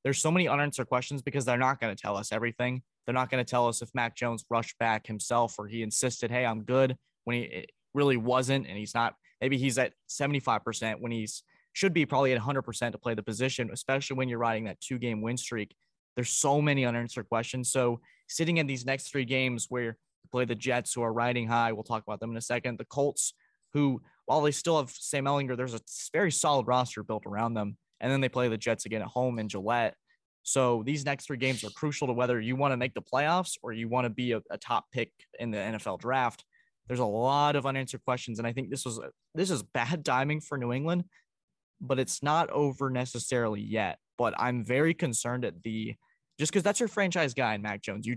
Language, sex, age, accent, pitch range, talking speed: English, male, 20-39, American, 115-140 Hz, 230 wpm